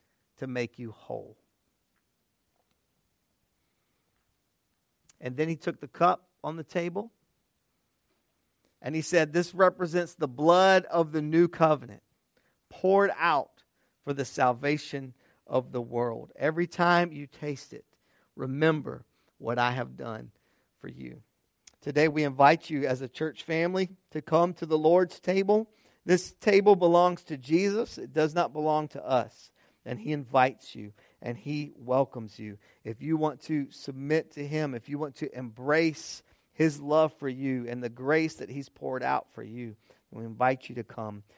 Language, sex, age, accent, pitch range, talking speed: English, male, 50-69, American, 120-160 Hz, 155 wpm